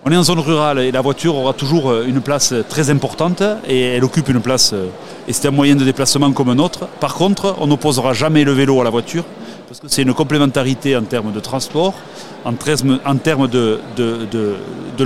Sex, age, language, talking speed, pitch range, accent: male, 40-59, French, 205 wpm, 130-160 Hz, French